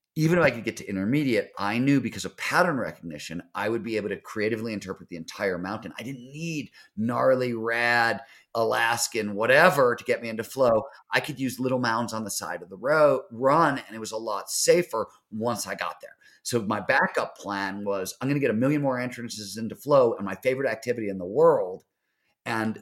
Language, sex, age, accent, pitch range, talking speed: English, male, 40-59, American, 100-130 Hz, 210 wpm